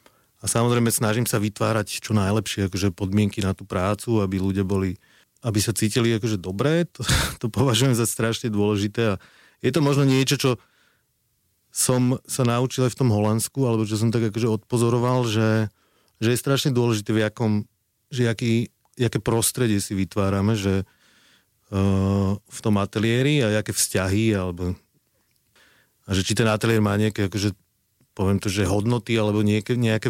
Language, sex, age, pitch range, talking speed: Slovak, male, 30-49, 100-115 Hz, 165 wpm